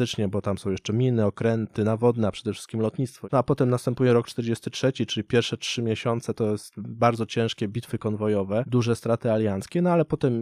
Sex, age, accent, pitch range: male, 20-39, native, 115-135 Hz